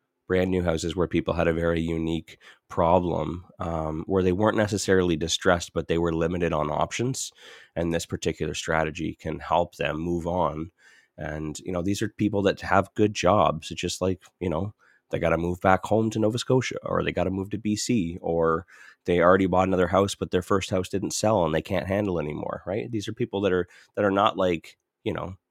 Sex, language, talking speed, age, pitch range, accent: male, English, 215 wpm, 30-49, 85-100 Hz, American